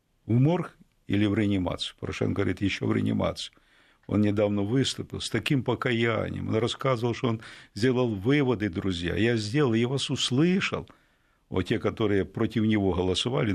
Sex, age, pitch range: male, 50-69, 95-120 Hz